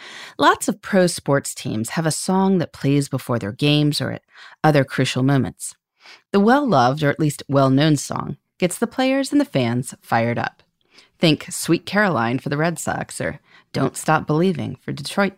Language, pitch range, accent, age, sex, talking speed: English, 135-195 Hz, American, 30-49, female, 180 wpm